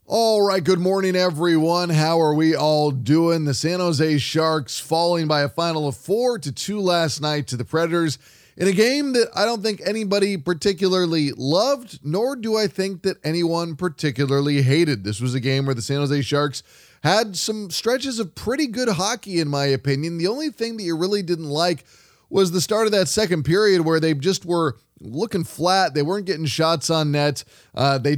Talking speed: 200 wpm